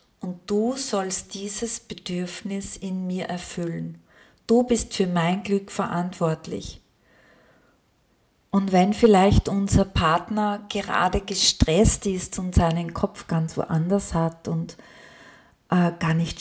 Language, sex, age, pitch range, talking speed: German, female, 40-59, 165-215 Hz, 115 wpm